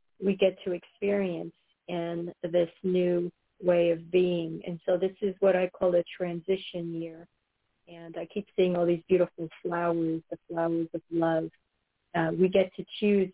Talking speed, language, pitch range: 165 wpm, English, 170-185 Hz